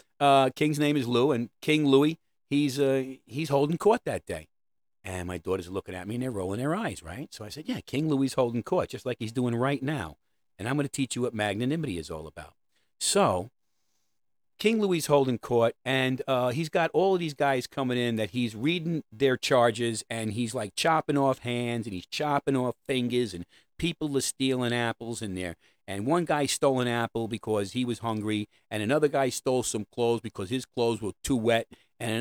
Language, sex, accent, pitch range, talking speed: English, male, American, 115-160 Hz, 210 wpm